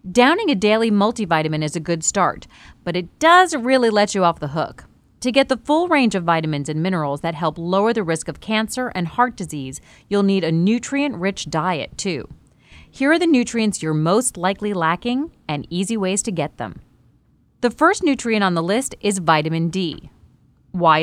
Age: 30-49